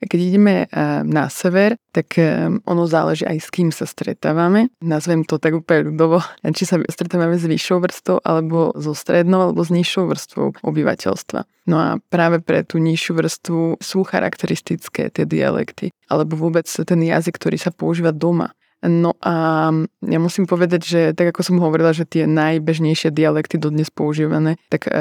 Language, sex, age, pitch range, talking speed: Slovak, female, 20-39, 155-175 Hz, 160 wpm